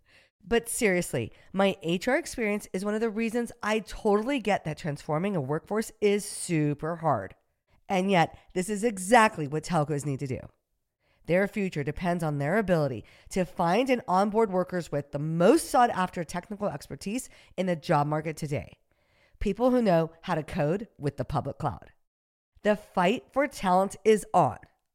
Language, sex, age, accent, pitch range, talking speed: English, female, 50-69, American, 155-220 Hz, 165 wpm